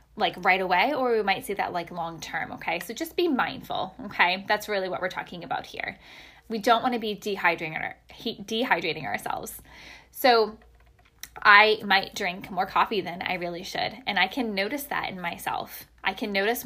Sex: female